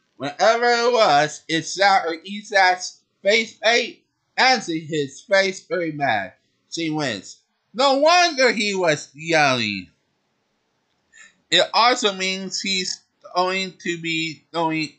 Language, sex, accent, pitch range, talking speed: English, male, American, 130-195 Hz, 110 wpm